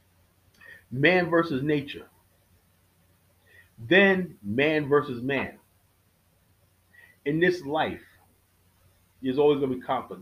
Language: English